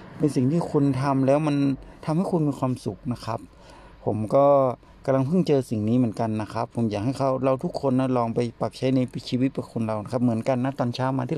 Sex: male